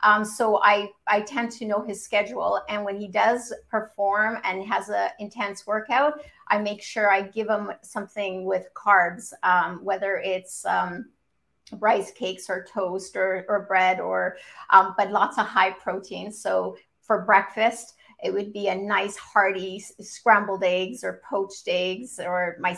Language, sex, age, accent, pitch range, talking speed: English, female, 50-69, American, 195-230 Hz, 165 wpm